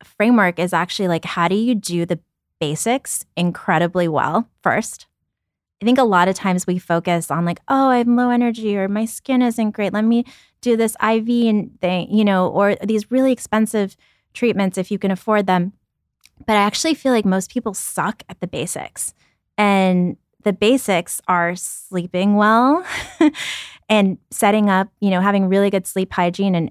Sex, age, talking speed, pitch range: female, 20-39, 175 wpm, 175-215 Hz